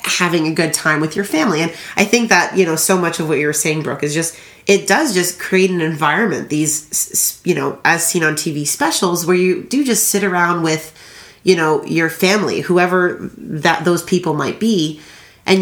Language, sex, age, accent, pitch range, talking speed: English, female, 30-49, American, 150-185 Hz, 210 wpm